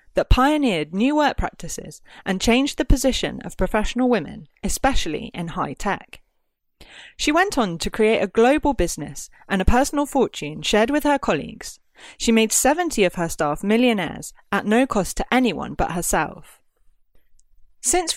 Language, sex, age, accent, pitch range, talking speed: English, female, 30-49, British, 170-255 Hz, 155 wpm